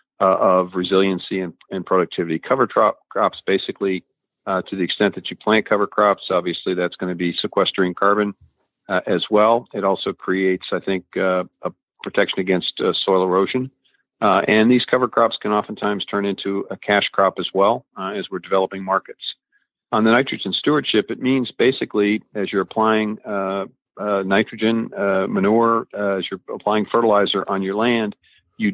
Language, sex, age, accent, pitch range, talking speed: English, male, 50-69, American, 95-105 Hz, 175 wpm